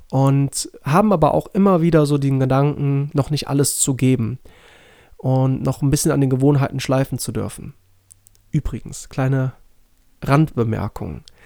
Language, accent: German, German